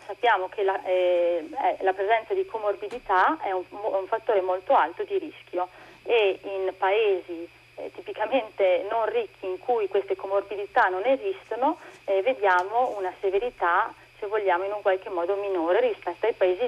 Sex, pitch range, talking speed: female, 180-230 Hz, 150 wpm